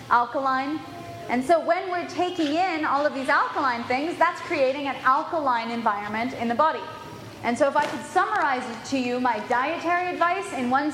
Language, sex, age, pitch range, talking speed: English, female, 20-39, 235-320 Hz, 180 wpm